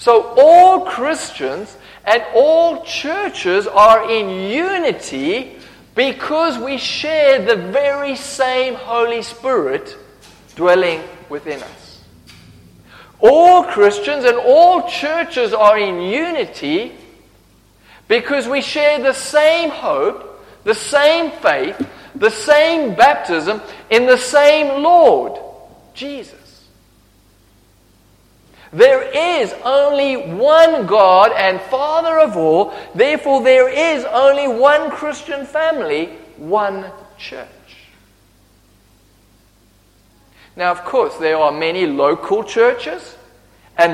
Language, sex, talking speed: English, male, 100 wpm